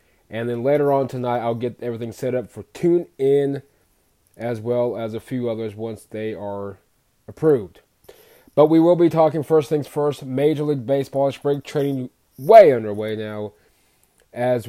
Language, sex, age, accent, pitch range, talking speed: English, male, 20-39, American, 120-140 Hz, 160 wpm